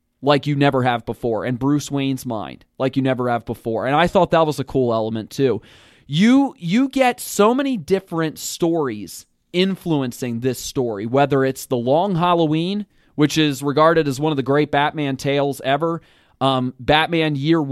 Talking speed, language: 175 wpm, English